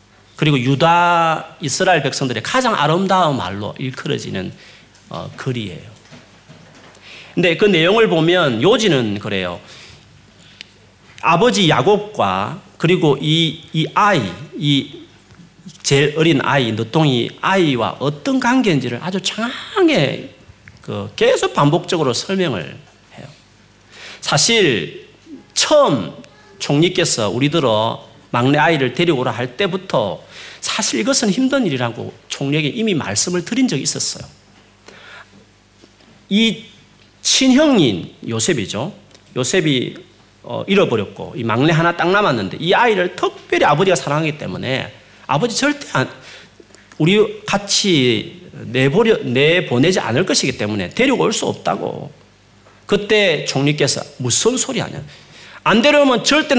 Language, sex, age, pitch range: Korean, male, 40-59, 130-205 Hz